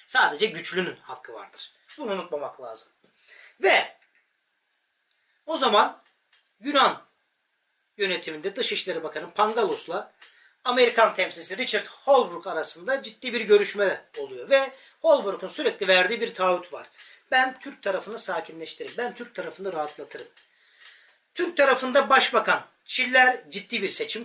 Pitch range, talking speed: 200-280 Hz, 115 wpm